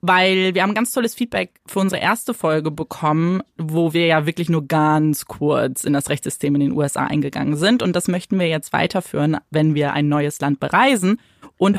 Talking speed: 200 wpm